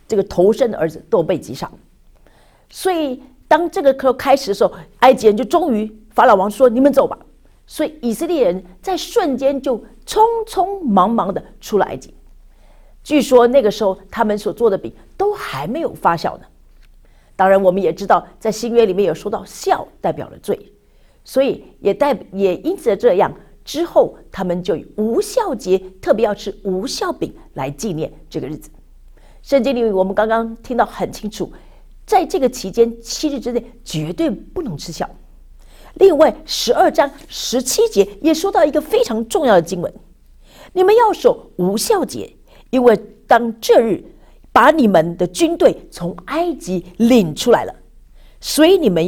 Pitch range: 200-315 Hz